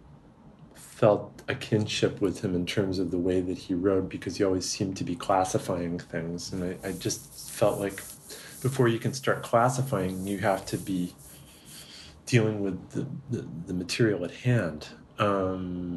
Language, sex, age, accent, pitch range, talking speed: English, male, 30-49, American, 90-105 Hz, 170 wpm